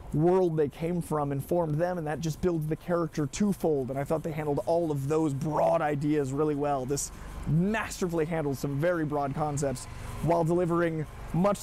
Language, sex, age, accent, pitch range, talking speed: English, male, 20-39, American, 140-175 Hz, 180 wpm